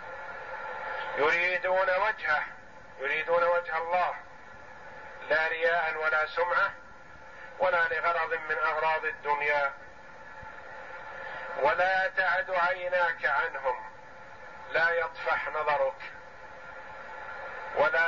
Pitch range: 150-170 Hz